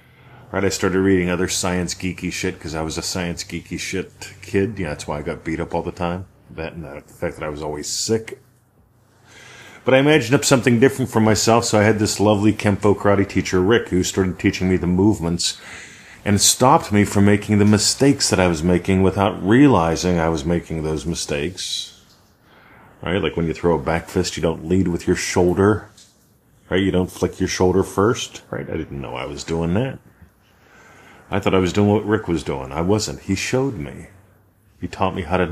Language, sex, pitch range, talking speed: English, male, 85-110 Hz, 210 wpm